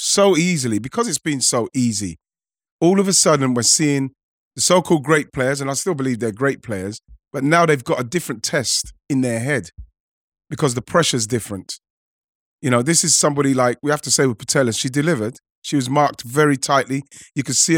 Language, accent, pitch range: English, British, 125-150 Hz